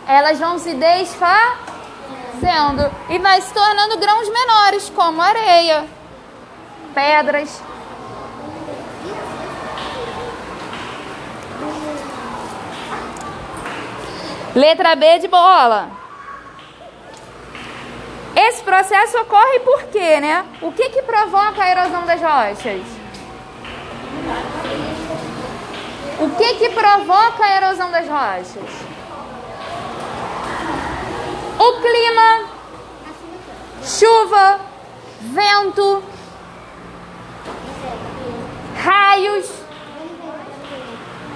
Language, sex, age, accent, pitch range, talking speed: Portuguese, female, 10-29, Brazilian, 325-410 Hz, 65 wpm